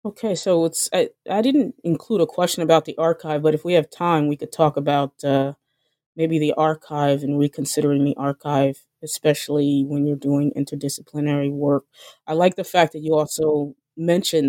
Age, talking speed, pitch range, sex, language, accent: 20-39, 180 wpm, 145-180 Hz, female, English, American